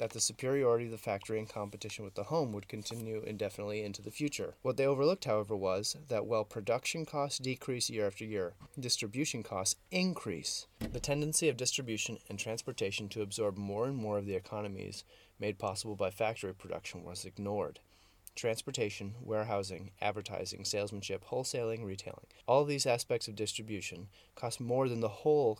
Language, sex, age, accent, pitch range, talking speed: English, male, 30-49, American, 100-120 Hz, 165 wpm